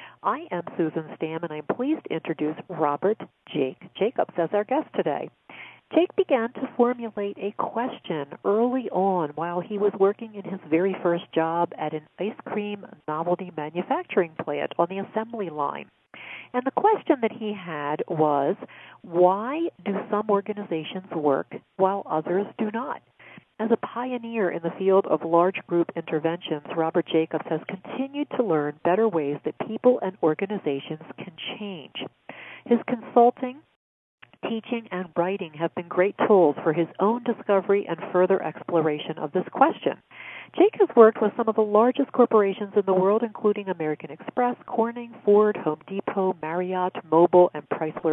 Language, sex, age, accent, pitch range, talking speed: English, female, 50-69, American, 165-225 Hz, 155 wpm